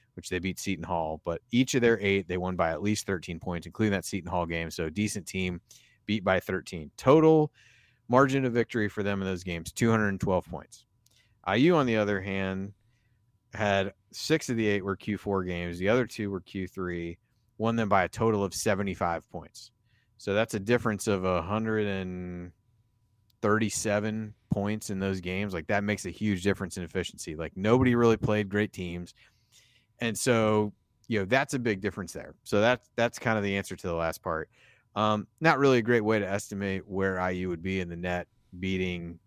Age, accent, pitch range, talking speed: 30-49, American, 90-110 Hz, 190 wpm